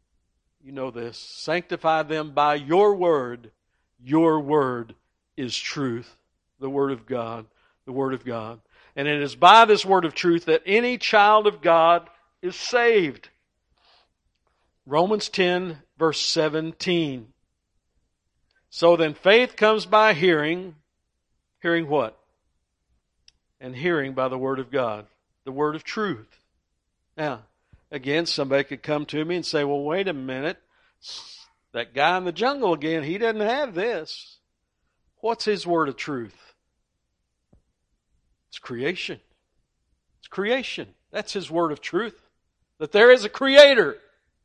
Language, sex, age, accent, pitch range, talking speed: English, male, 60-79, American, 120-185 Hz, 135 wpm